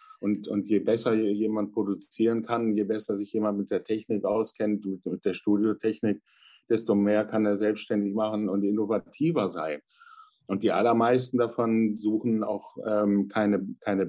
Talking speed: 160 wpm